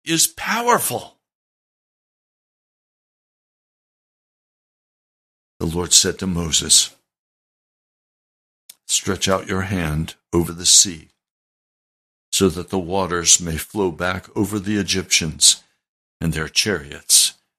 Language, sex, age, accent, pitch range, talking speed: English, male, 60-79, American, 95-120 Hz, 90 wpm